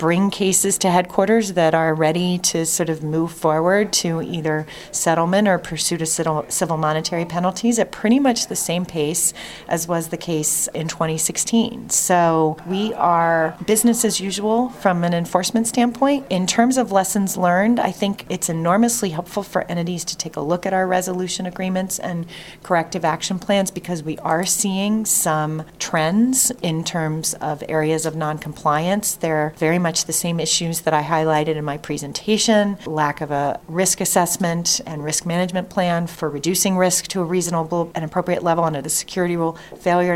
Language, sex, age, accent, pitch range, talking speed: English, female, 30-49, American, 160-190 Hz, 170 wpm